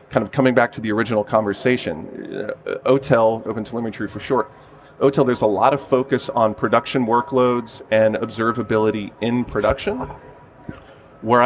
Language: English